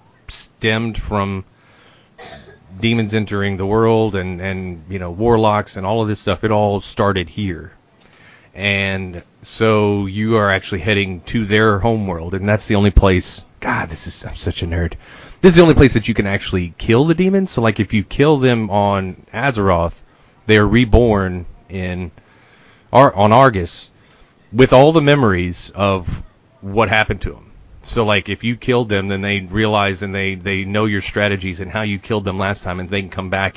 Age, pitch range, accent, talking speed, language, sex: 30-49, 95-115 Hz, American, 185 wpm, English, male